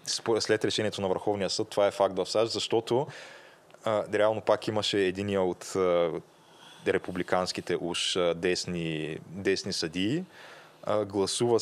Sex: male